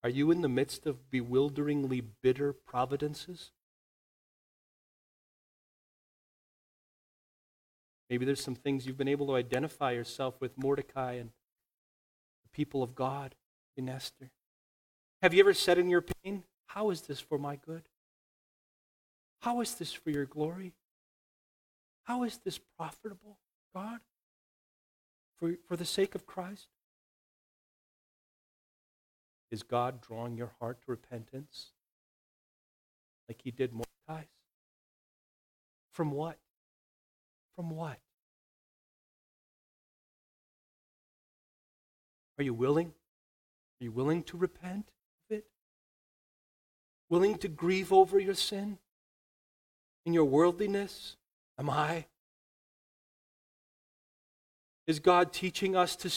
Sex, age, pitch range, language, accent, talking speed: male, 40-59, 130-185 Hz, English, American, 105 wpm